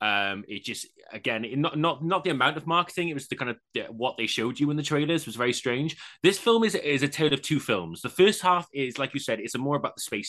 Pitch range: 110-150 Hz